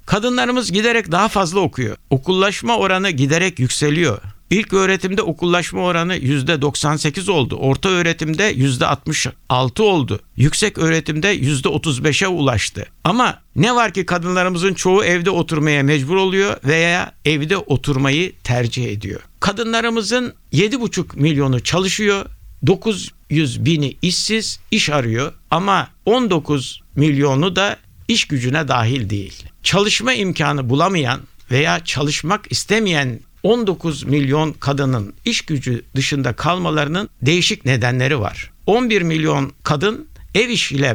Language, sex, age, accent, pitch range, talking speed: Turkish, male, 60-79, native, 135-195 Hz, 110 wpm